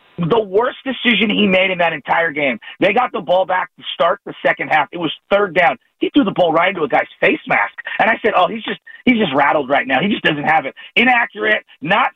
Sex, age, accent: male, 40-59, American